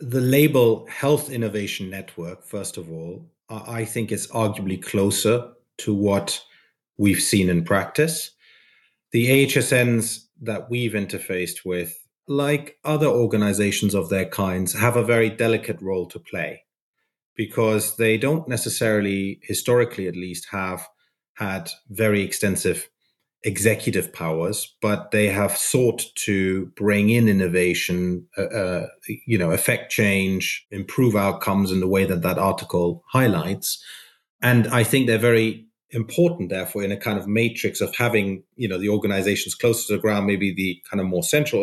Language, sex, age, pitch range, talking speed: English, male, 30-49, 95-115 Hz, 145 wpm